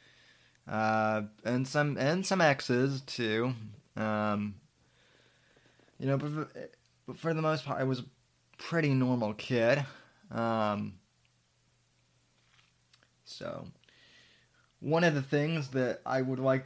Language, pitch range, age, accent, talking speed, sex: English, 110-130 Hz, 20-39, American, 120 wpm, male